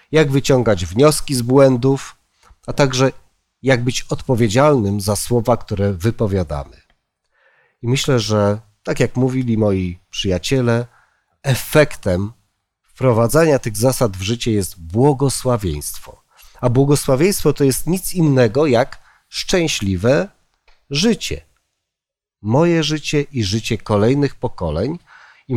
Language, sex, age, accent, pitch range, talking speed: Polish, male, 40-59, native, 105-140 Hz, 110 wpm